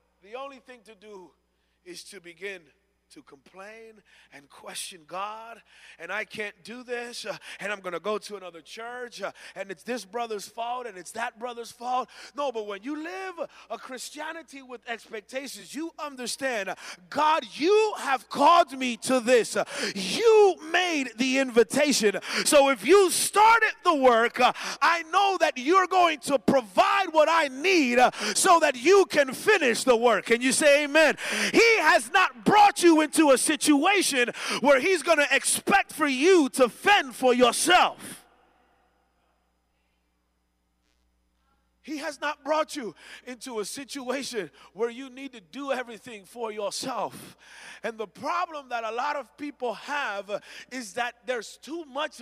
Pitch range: 220-315 Hz